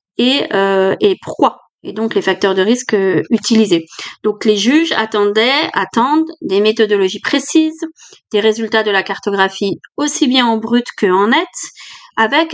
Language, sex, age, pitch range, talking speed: French, female, 30-49, 205-265 Hz, 155 wpm